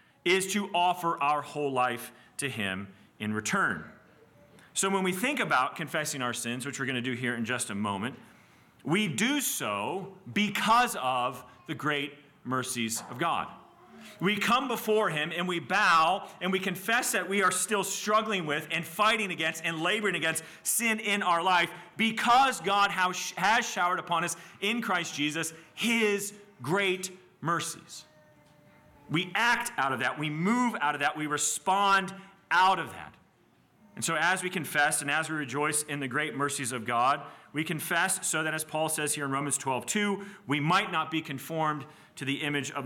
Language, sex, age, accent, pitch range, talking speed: English, male, 40-59, American, 130-190 Hz, 180 wpm